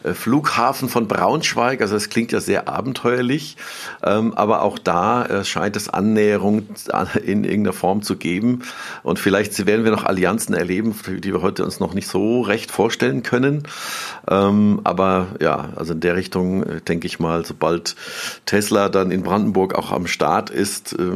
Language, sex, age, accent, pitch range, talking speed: German, male, 50-69, German, 100-120 Hz, 155 wpm